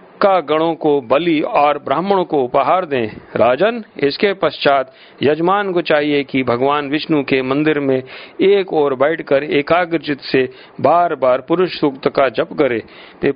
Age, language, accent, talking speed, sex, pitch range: 50-69, Hindi, native, 110 wpm, male, 135-180 Hz